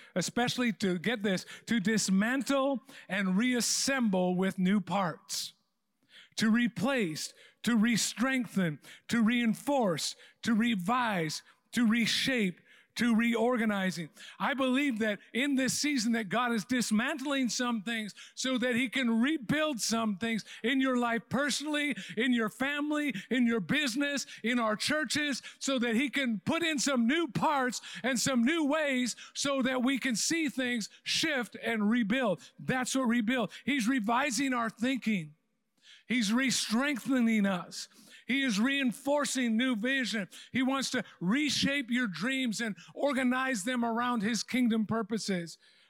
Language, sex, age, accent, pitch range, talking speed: English, male, 50-69, American, 200-255 Hz, 135 wpm